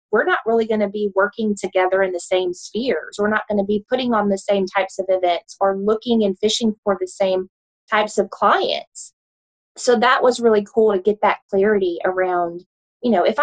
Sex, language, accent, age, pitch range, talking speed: female, English, American, 20-39, 190-230 Hz, 210 wpm